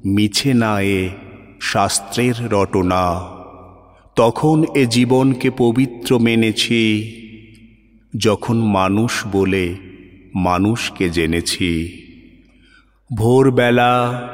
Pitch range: 105-130 Hz